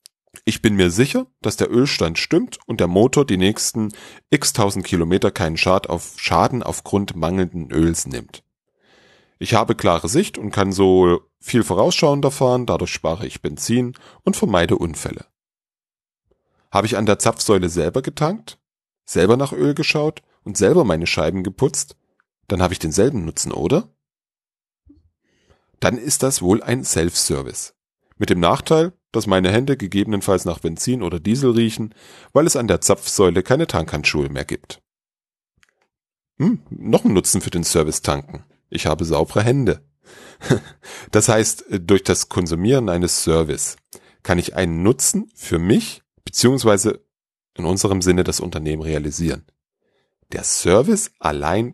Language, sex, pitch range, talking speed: German, male, 85-120 Hz, 140 wpm